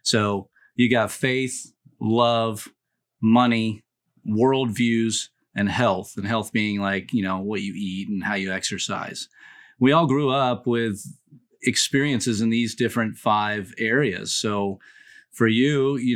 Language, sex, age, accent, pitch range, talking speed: English, male, 30-49, American, 110-130 Hz, 135 wpm